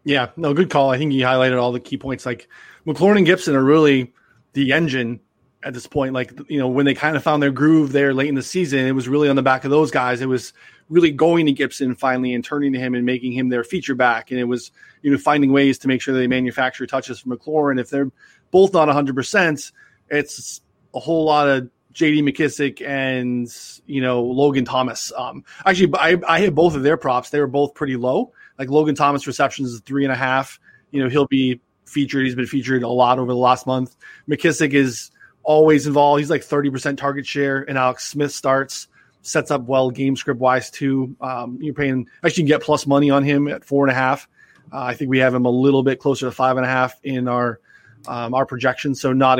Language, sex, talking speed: English, male, 230 wpm